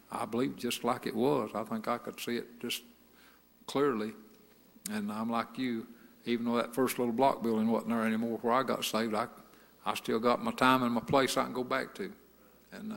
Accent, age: American, 60-79